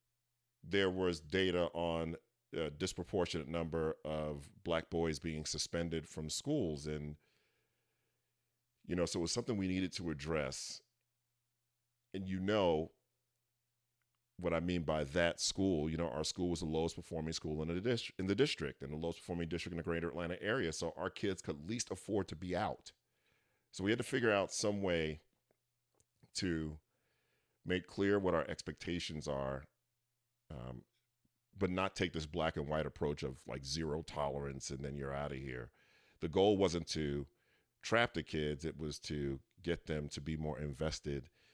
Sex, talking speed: male, 170 wpm